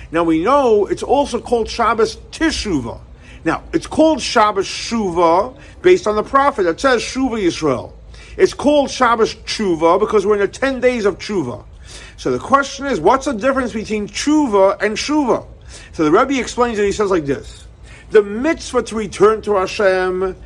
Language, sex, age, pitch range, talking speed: English, male, 50-69, 200-280 Hz, 175 wpm